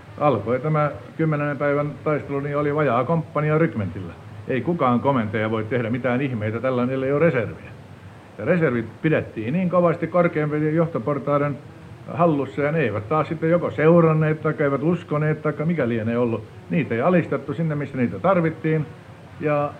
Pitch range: 110-145 Hz